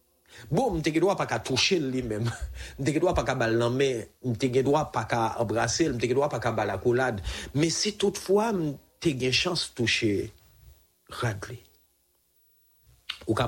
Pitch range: 100-140 Hz